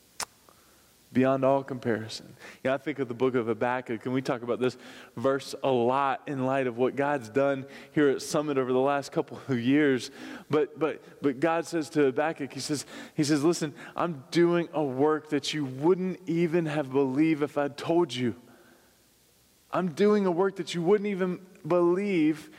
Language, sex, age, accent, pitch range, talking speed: English, male, 20-39, American, 145-195 Hz, 185 wpm